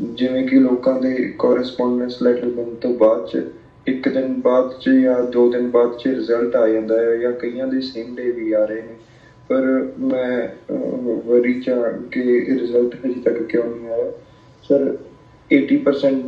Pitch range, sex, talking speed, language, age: 125-175 Hz, male, 155 wpm, Punjabi, 20-39